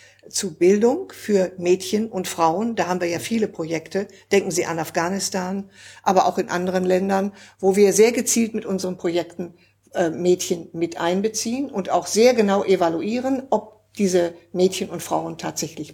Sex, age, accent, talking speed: female, 60-79, German, 160 wpm